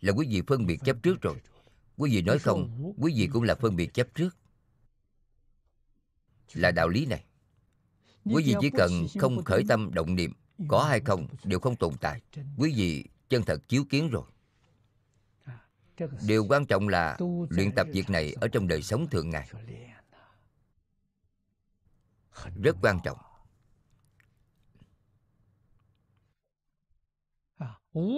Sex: male